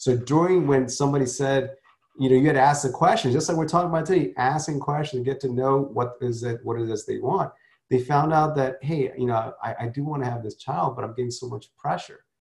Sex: male